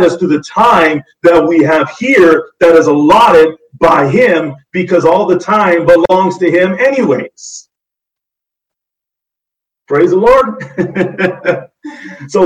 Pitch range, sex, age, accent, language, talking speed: 185-280 Hz, male, 50-69, American, English, 120 wpm